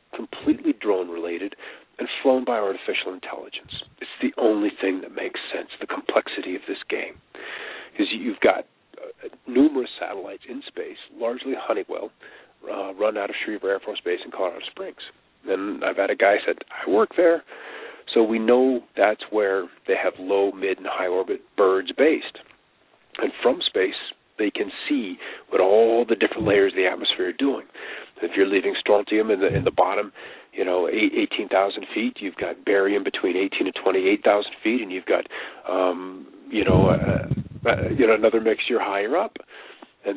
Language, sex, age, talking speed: English, male, 40-59, 175 wpm